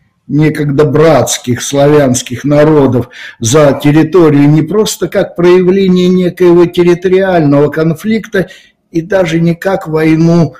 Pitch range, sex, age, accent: 140-165 Hz, male, 60-79, native